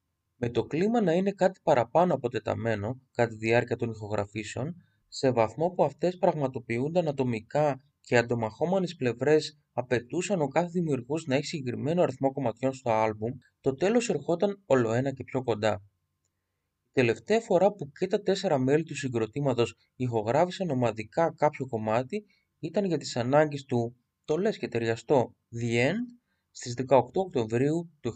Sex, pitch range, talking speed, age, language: male, 115-165 Hz, 150 wpm, 20-39, Greek